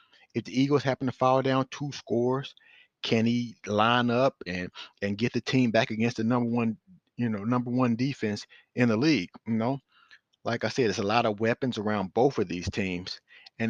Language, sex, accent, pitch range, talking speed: English, male, American, 105-130 Hz, 205 wpm